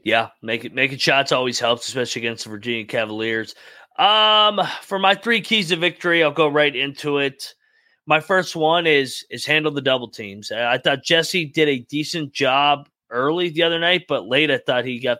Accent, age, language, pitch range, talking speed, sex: American, 30-49, English, 120-155 Hz, 195 wpm, male